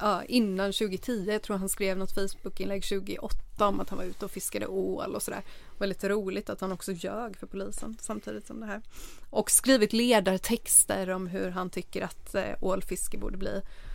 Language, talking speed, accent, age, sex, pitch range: Swedish, 200 wpm, native, 30-49, female, 195-235 Hz